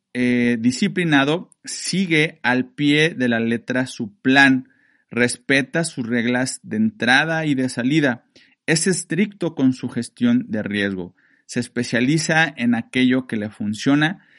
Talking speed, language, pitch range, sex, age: 135 wpm, Spanish, 125-160 Hz, male, 40-59